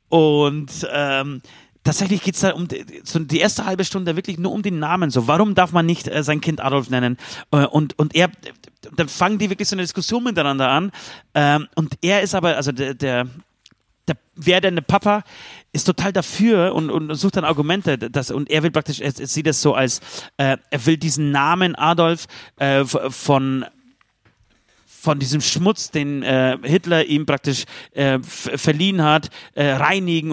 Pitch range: 130-170 Hz